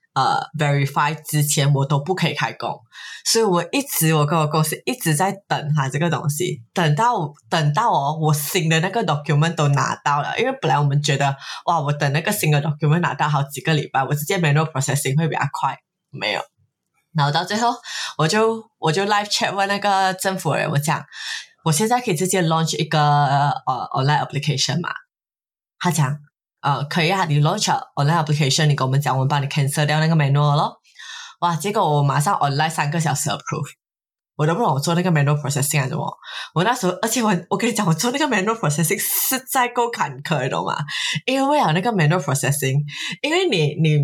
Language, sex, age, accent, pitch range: Chinese, female, 20-39, Malaysian, 145-180 Hz